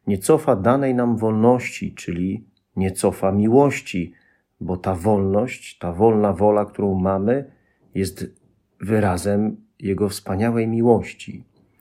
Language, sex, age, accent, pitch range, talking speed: Polish, male, 40-59, native, 100-120 Hz, 110 wpm